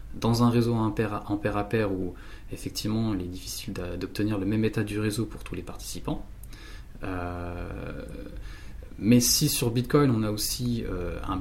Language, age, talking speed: French, 20-39, 165 wpm